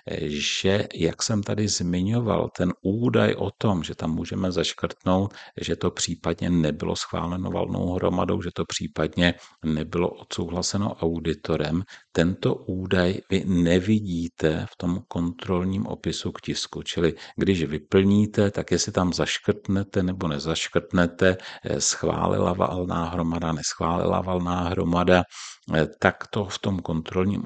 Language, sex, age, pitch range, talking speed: Czech, male, 50-69, 85-100 Hz, 120 wpm